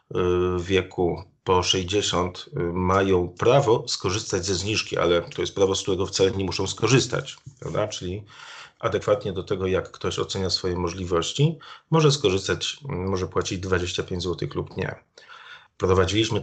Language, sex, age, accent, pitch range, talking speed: Polish, male, 30-49, native, 95-115 Hz, 140 wpm